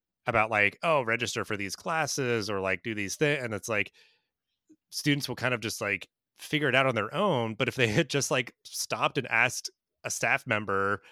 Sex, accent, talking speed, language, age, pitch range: male, American, 210 wpm, English, 30-49, 100-125 Hz